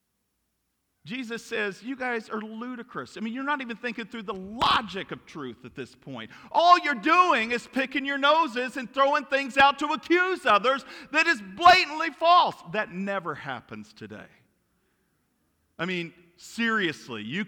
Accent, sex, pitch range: American, male, 195-295 Hz